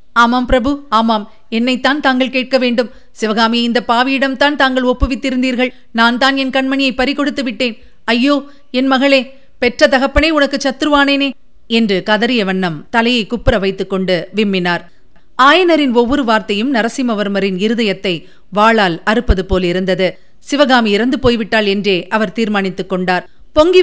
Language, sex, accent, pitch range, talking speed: Tamil, female, native, 200-255 Hz, 125 wpm